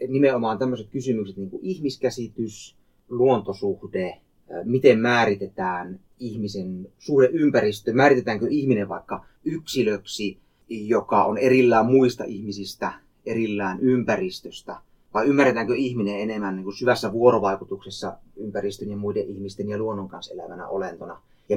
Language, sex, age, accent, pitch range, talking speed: Finnish, male, 30-49, native, 100-140 Hz, 110 wpm